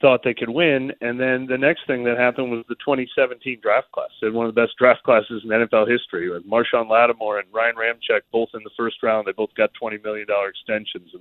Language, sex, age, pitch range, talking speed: English, male, 30-49, 110-135 Hz, 240 wpm